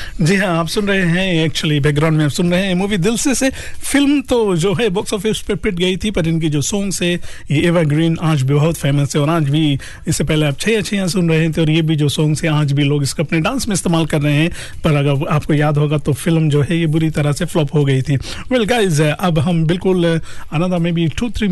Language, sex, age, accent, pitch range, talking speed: Hindi, male, 50-69, native, 150-185 Hz, 110 wpm